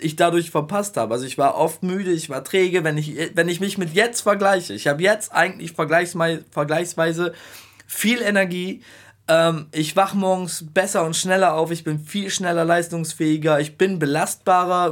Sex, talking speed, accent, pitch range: male, 175 wpm, German, 150-185 Hz